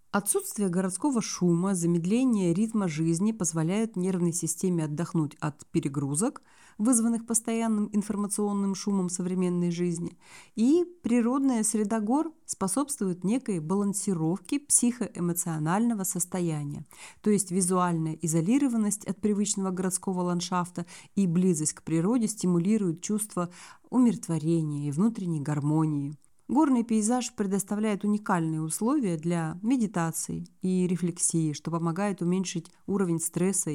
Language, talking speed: Russian, 105 wpm